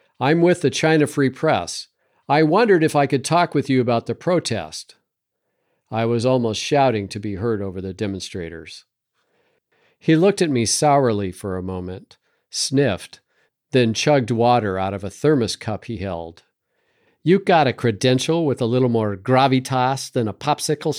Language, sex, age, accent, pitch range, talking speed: English, male, 50-69, American, 105-145 Hz, 165 wpm